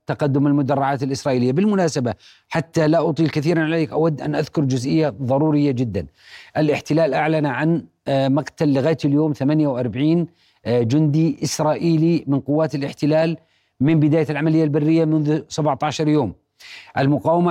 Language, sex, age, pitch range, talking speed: Arabic, male, 40-59, 140-160 Hz, 120 wpm